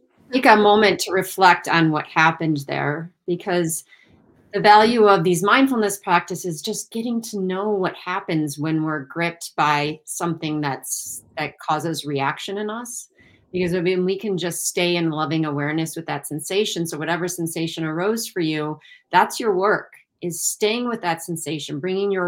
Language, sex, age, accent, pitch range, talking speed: English, female, 30-49, American, 155-185 Hz, 165 wpm